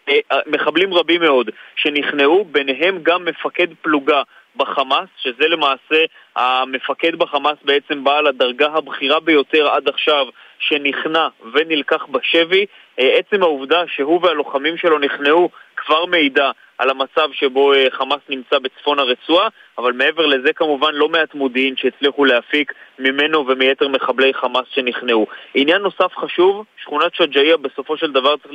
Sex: male